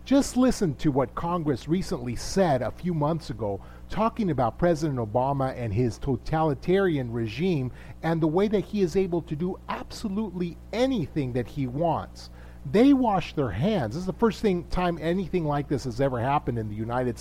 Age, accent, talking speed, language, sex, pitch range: 40-59, American, 180 wpm, English, male, 125-195 Hz